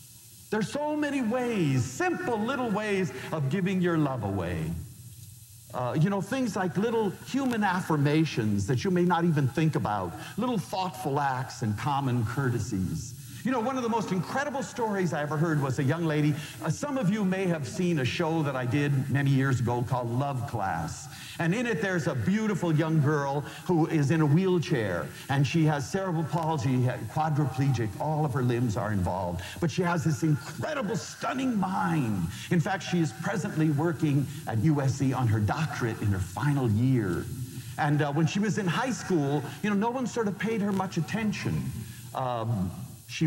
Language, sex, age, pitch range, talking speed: English, male, 50-69, 120-175 Hz, 185 wpm